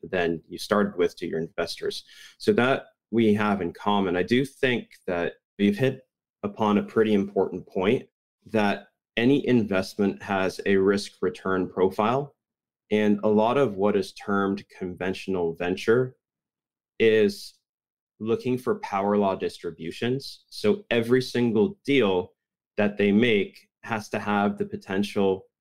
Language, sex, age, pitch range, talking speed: English, male, 20-39, 95-120 Hz, 140 wpm